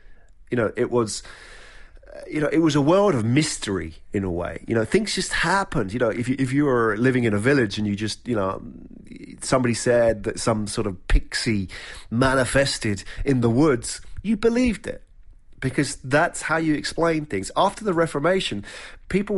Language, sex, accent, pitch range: English, male, British, 100-140 Hz